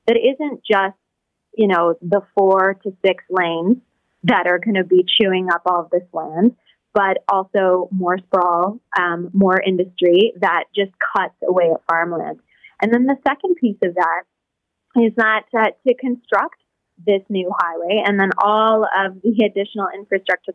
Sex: female